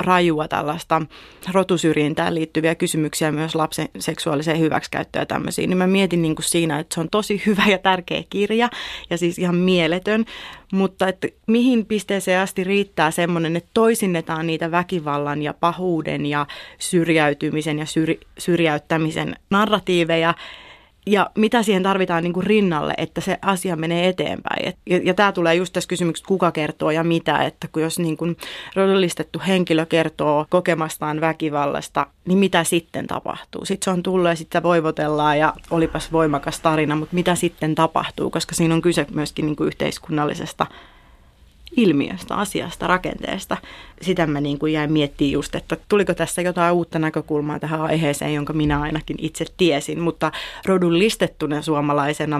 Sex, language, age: female, Finnish, 30-49